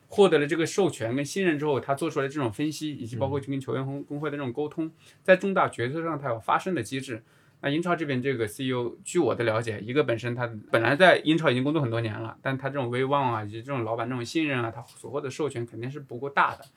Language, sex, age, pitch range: Chinese, male, 20-39, 115-145 Hz